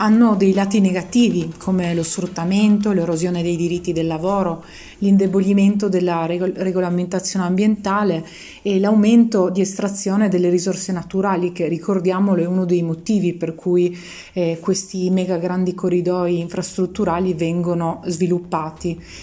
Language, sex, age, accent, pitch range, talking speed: Italian, female, 30-49, native, 180-205 Hz, 125 wpm